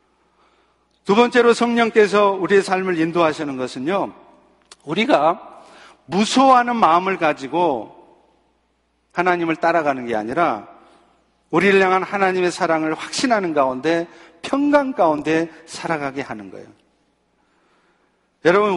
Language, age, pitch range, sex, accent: Korean, 40-59, 150-205 Hz, male, native